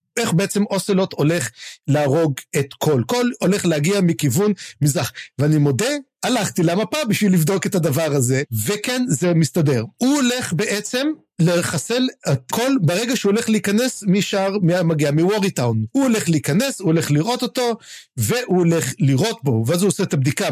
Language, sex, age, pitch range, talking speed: Hebrew, male, 50-69, 150-225 Hz, 155 wpm